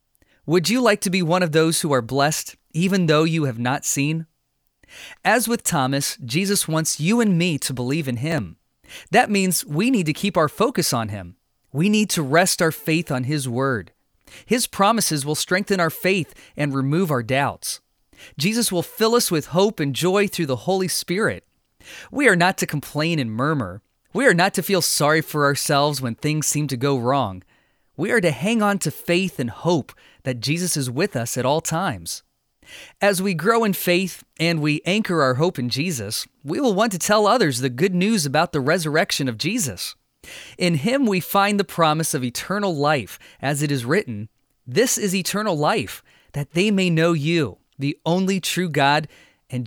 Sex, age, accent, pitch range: male, 30-49, American, 140-190 Hz